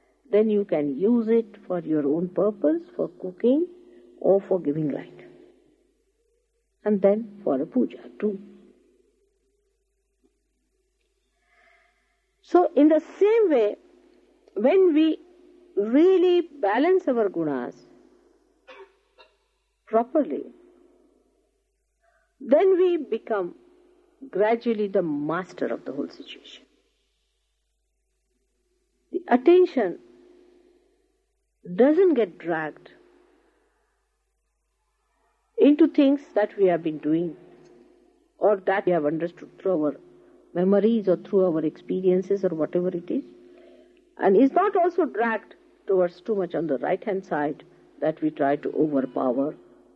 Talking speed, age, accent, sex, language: 105 wpm, 50-69, Indian, female, English